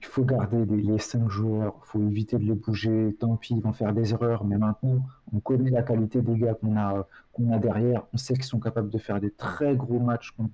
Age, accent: 40-59, French